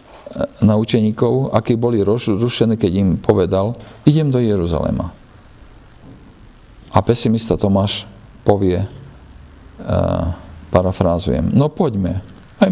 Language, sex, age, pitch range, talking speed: Slovak, male, 50-69, 90-115 Hz, 90 wpm